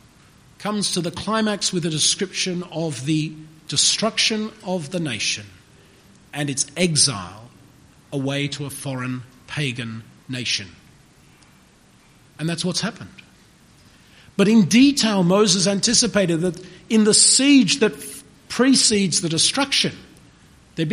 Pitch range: 165-235 Hz